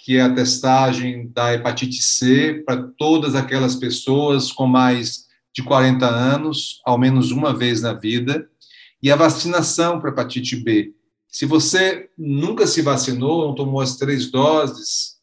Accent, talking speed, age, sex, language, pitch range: Brazilian, 150 wpm, 40-59, male, Portuguese, 125-145 Hz